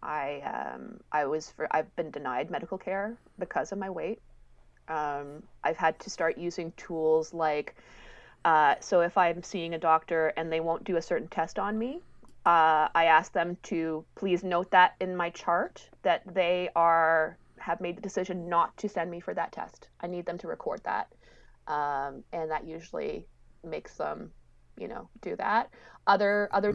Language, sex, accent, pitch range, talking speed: English, female, American, 165-200 Hz, 180 wpm